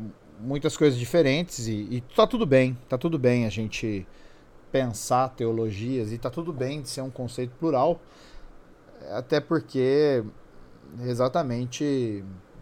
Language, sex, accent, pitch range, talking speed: Portuguese, male, Brazilian, 110-140 Hz, 130 wpm